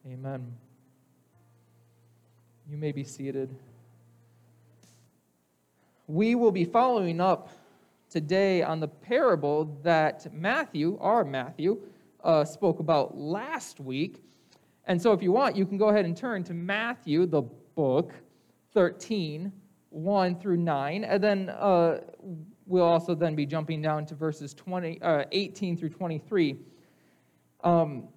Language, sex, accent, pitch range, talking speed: English, male, American, 155-205 Hz, 120 wpm